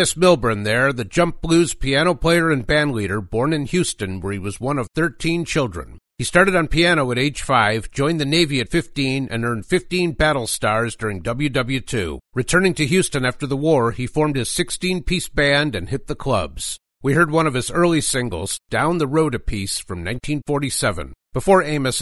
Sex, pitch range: male, 110-150 Hz